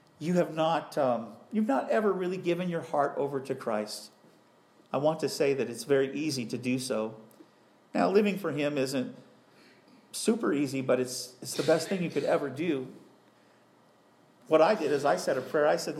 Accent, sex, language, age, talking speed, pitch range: American, male, English, 50-69, 195 wpm, 130-160 Hz